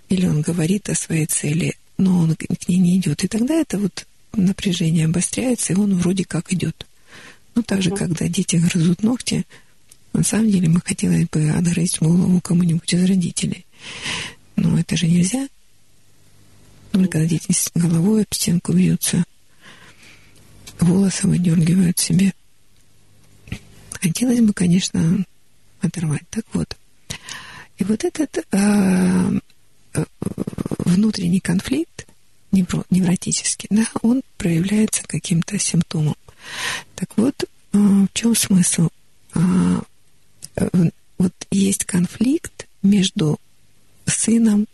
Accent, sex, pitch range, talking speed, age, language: native, female, 160-200 Hz, 110 wpm, 50-69, Russian